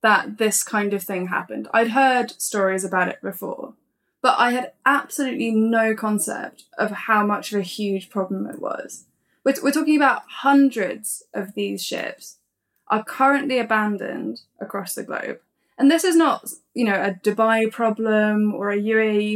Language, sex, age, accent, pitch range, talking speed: English, female, 10-29, British, 205-265 Hz, 165 wpm